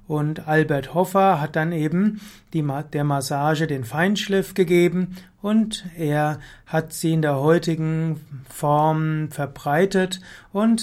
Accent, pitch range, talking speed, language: German, 145-175 Hz, 115 wpm, German